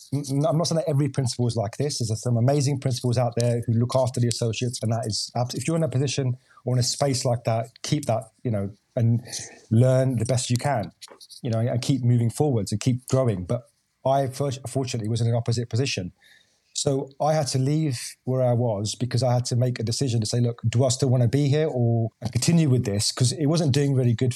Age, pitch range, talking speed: 30-49, 120-135 Hz, 235 wpm